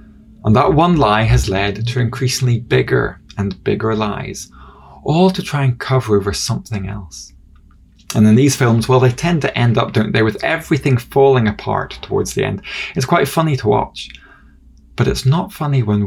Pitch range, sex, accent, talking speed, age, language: 90-130 Hz, male, British, 185 wpm, 20-39, English